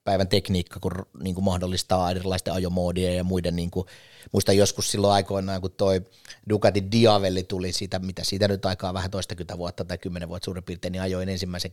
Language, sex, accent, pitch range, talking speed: Finnish, male, native, 90-105 Hz, 180 wpm